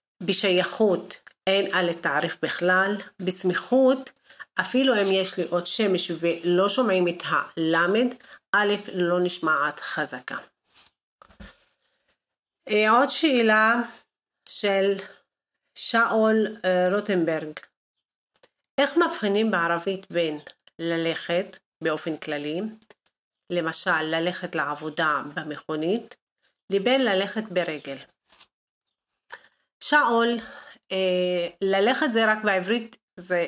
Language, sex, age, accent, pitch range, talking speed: Hebrew, female, 40-59, native, 175-220 Hz, 80 wpm